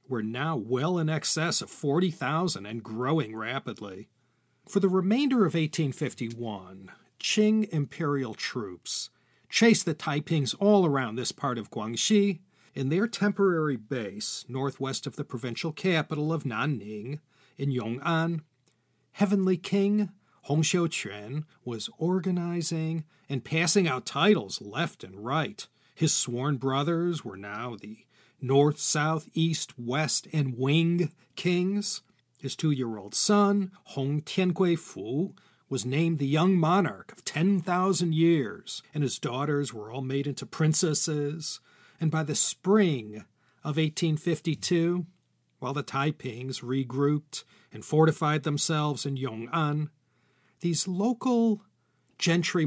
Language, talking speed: English, 120 wpm